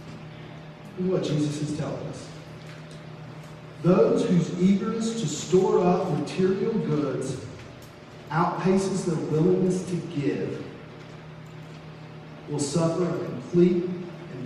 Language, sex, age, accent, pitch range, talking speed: English, male, 40-59, American, 140-170 Hz, 95 wpm